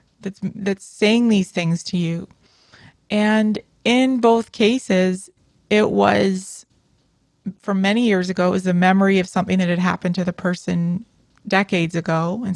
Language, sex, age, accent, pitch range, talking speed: English, female, 20-39, American, 180-215 Hz, 155 wpm